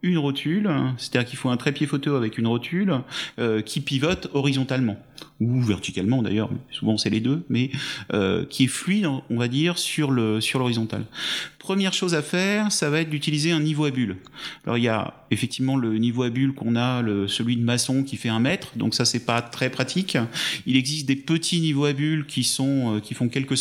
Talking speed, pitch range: 215 wpm, 125-170 Hz